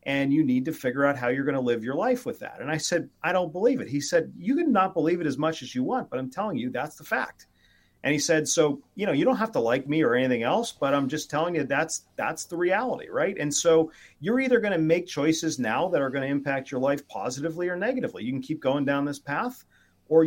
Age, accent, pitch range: 40-59, American, 125-165 Hz